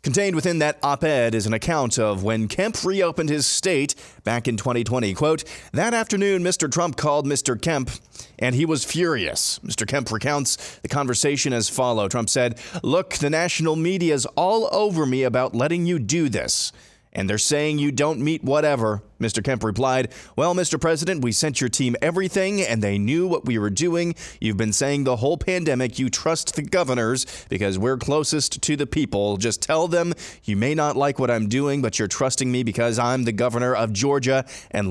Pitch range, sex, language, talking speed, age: 120-150 Hz, male, English, 195 wpm, 30-49